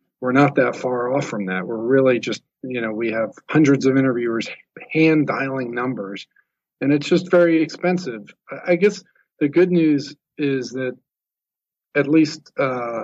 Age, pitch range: 40-59, 115-145 Hz